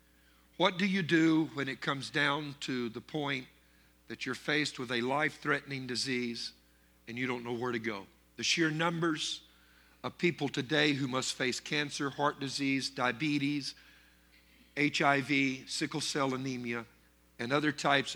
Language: English